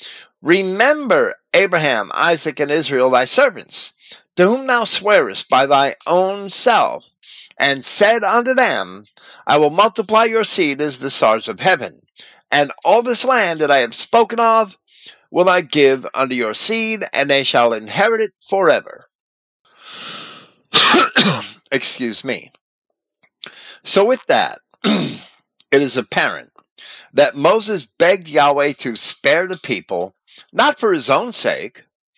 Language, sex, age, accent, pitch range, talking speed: English, male, 50-69, American, 135-215 Hz, 130 wpm